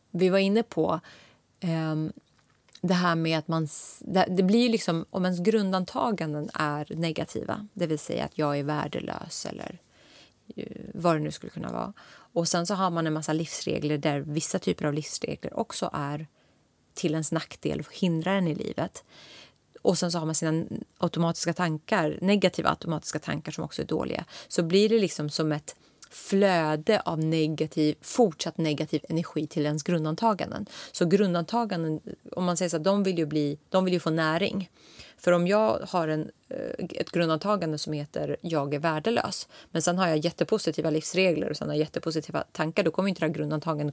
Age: 30-49